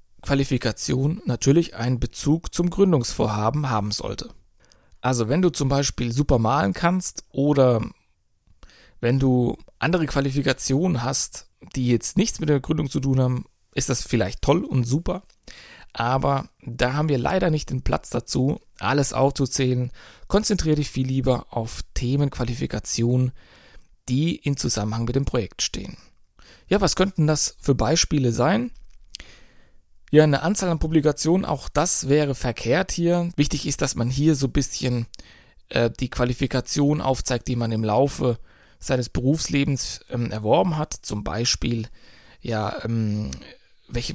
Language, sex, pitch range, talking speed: German, male, 115-145 Hz, 140 wpm